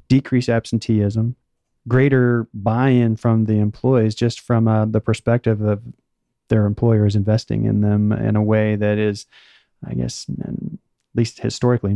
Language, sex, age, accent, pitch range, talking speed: English, male, 30-49, American, 110-120 Hz, 140 wpm